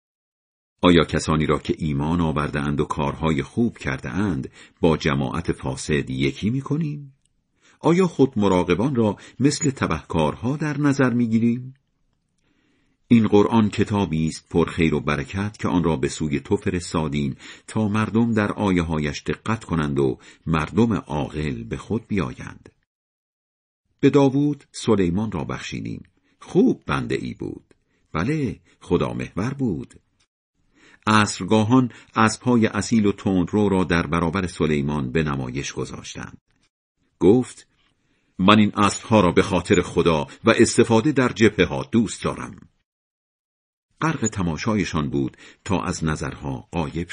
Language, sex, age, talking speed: Persian, male, 50-69, 130 wpm